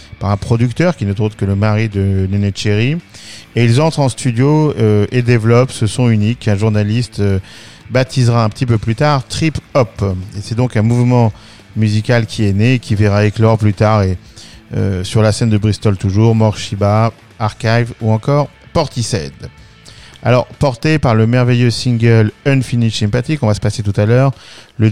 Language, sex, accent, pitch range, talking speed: French, male, French, 105-125 Hz, 190 wpm